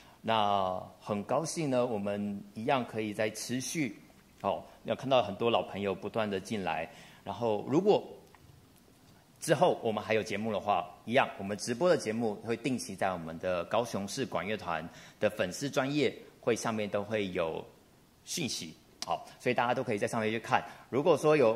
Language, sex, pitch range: Chinese, male, 100-125 Hz